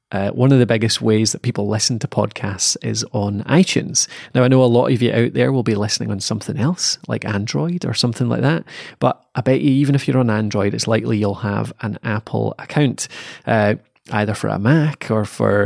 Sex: male